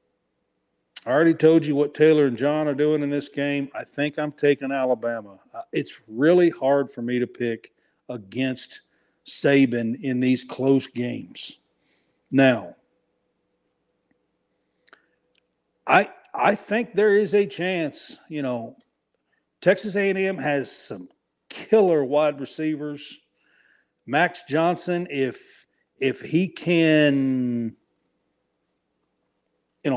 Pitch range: 125-165 Hz